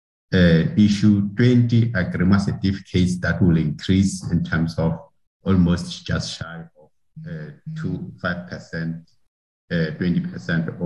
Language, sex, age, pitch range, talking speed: English, male, 50-69, 90-110 Hz, 95 wpm